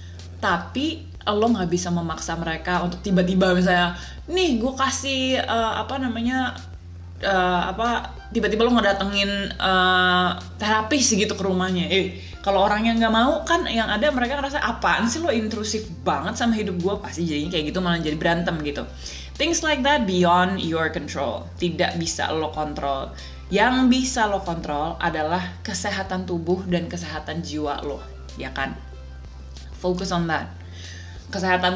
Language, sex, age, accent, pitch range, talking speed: Indonesian, female, 20-39, native, 160-200 Hz, 150 wpm